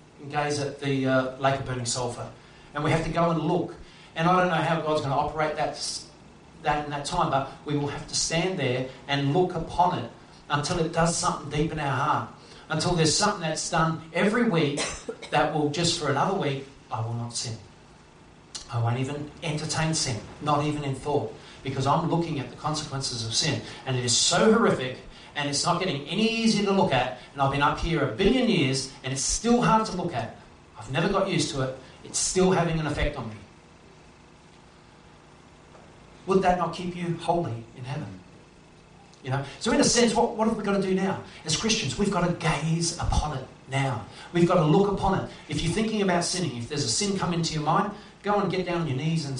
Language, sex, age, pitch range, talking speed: English, male, 40-59, 135-175 Hz, 220 wpm